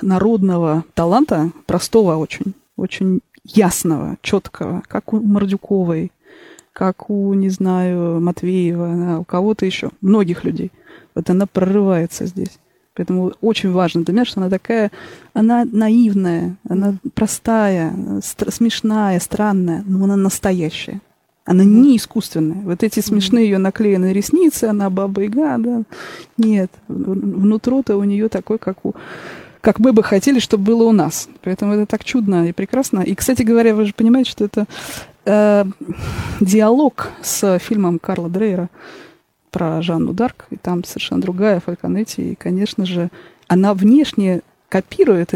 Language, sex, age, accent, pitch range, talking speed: Russian, female, 20-39, native, 180-220 Hz, 135 wpm